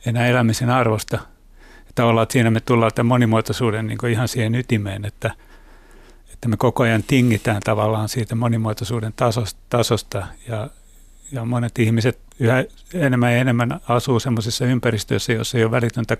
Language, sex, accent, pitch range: Finnish, male, native, 115-125 Hz